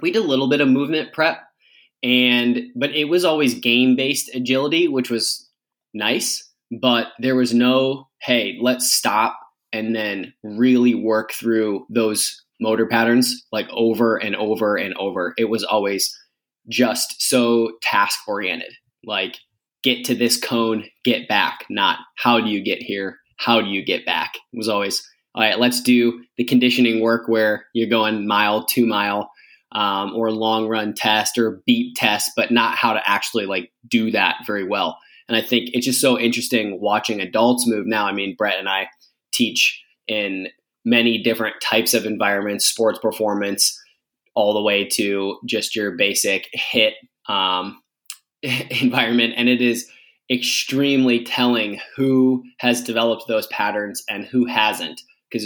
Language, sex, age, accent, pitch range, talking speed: English, male, 20-39, American, 110-125 Hz, 160 wpm